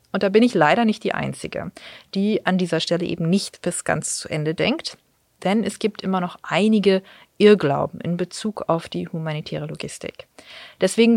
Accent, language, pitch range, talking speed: German, German, 180-230 Hz, 175 wpm